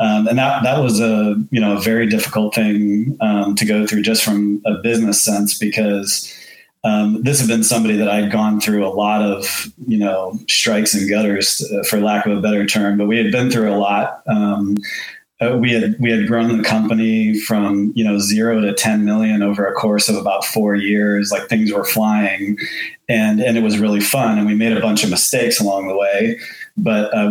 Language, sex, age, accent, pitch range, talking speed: English, male, 30-49, American, 105-110 Hz, 215 wpm